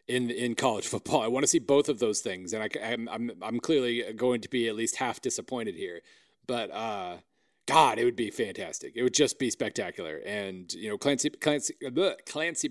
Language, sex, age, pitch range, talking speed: English, male, 30-49, 110-135 Hz, 210 wpm